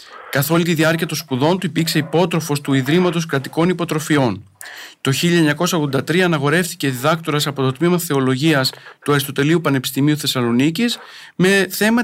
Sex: male